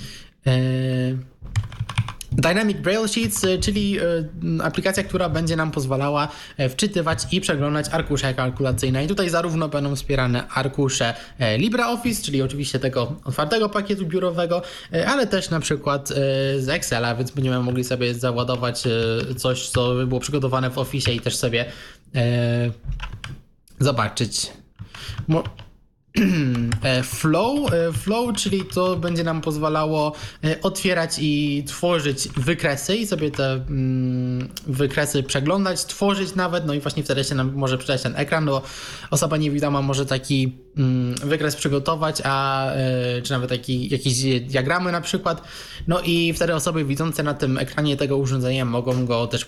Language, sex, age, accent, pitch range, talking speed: Polish, male, 20-39, native, 125-165 Hz, 125 wpm